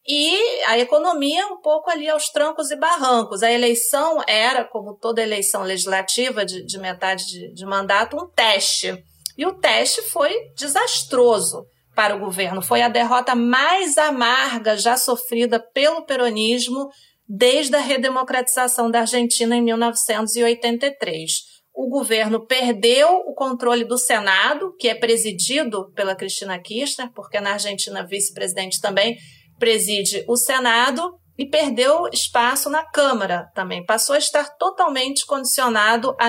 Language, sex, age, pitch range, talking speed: Portuguese, female, 40-59, 210-275 Hz, 135 wpm